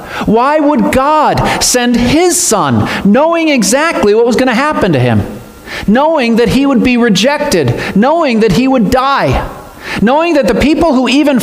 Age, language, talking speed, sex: 40-59, English, 170 wpm, male